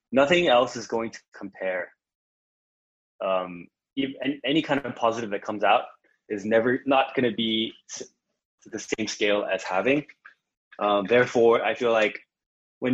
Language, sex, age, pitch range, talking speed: English, male, 20-39, 95-120 Hz, 155 wpm